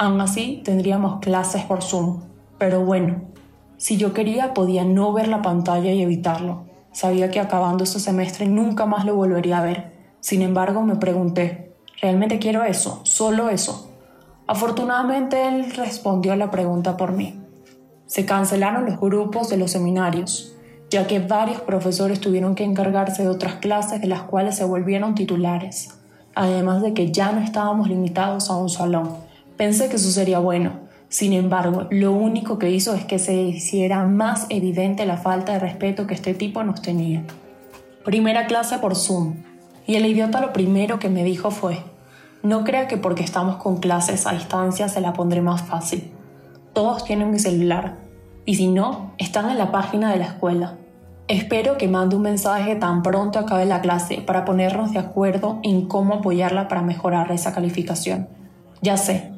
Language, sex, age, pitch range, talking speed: Spanish, female, 10-29, 180-205 Hz, 170 wpm